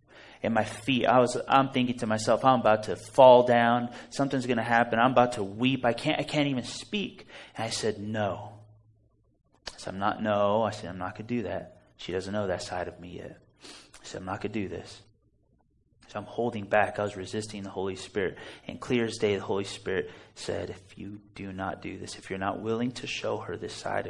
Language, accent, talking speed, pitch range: Italian, American, 235 wpm, 100-120 Hz